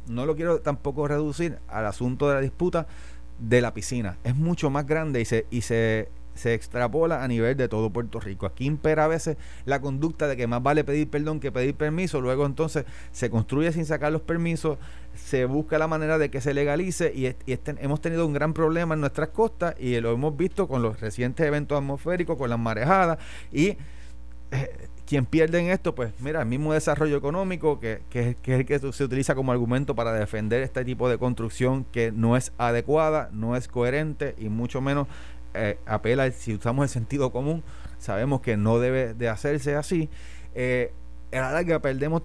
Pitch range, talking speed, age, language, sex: 115-155 Hz, 200 wpm, 30-49, Spanish, male